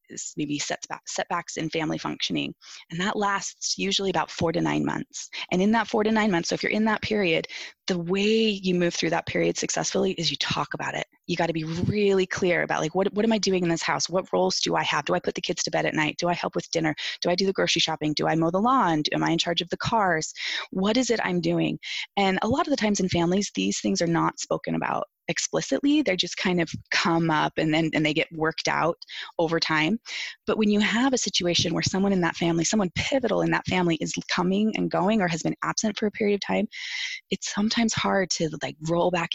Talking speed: 255 wpm